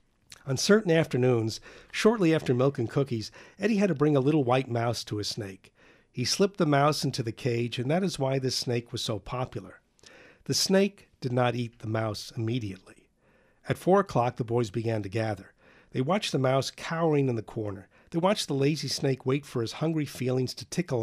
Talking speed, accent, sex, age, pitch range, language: 205 wpm, American, male, 50-69, 115-150 Hz, English